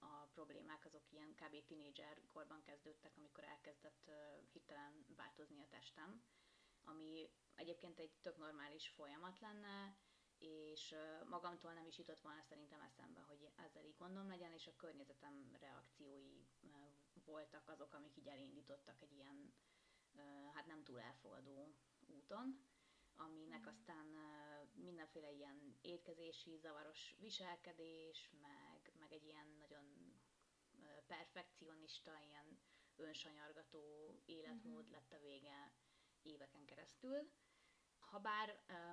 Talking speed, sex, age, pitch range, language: 110 wpm, female, 20-39, 145-170 Hz, Hungarian